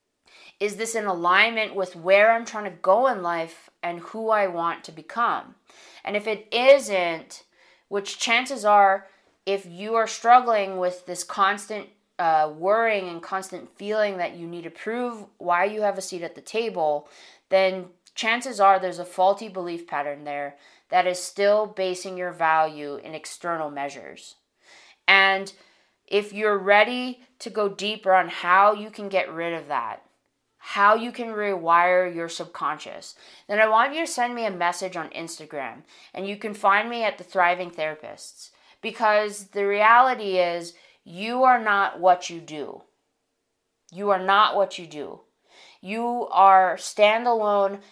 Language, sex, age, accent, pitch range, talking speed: English, female, 20-39, American, 175-215 Hz, 160 wpm